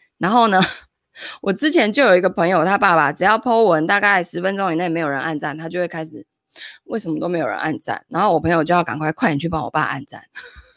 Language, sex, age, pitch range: Chinese, female, 20-39, 175-280 Hz